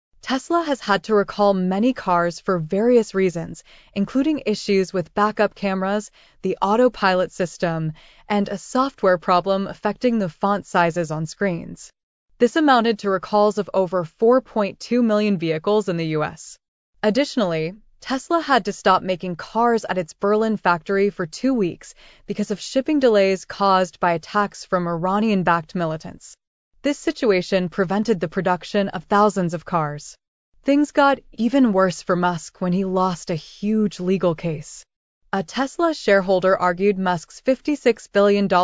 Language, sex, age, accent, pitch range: Japanese, female, 20-39, American, 175-220 Hz